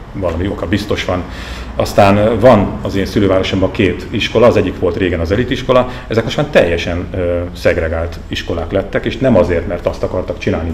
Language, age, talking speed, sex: Hungarian, 40-59, 180 wpm, male